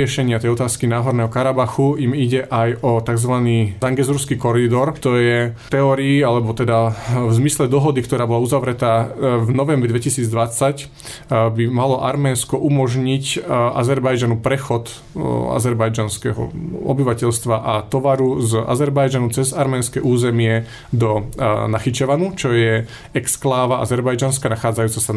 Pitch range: 115-135 Hz